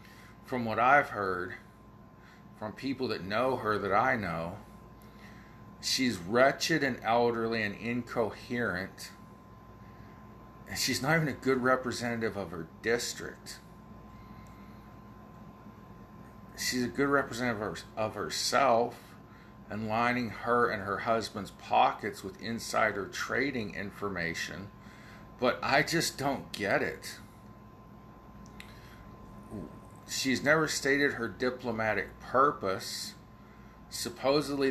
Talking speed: 100 wpm